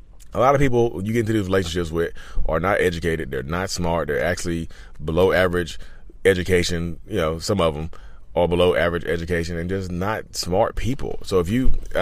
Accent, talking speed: American, 195 wpm